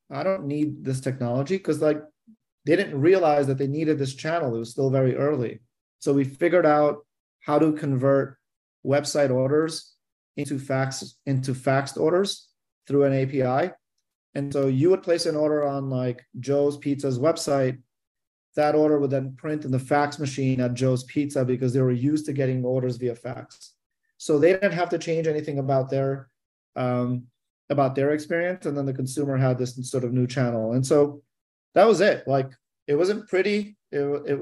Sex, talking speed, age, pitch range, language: male, 180 wpm, 30-49, 130-150 Hz, English